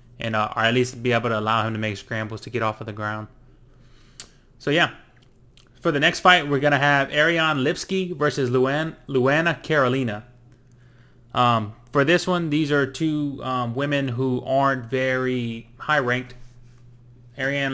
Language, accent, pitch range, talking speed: English, American, 120-140 Hz, 160 wpm